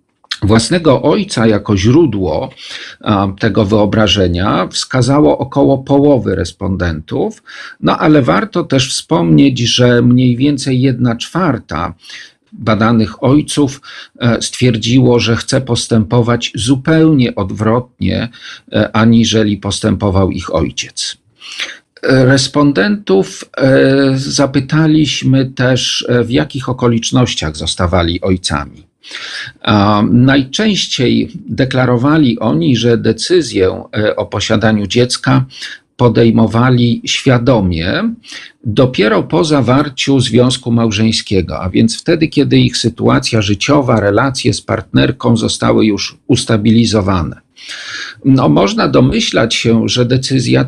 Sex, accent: male, native